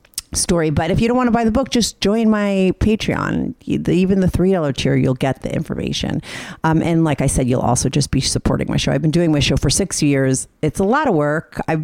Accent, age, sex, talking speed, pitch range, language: American, 40-59, female, 245 wpm, 135-175 Hz, English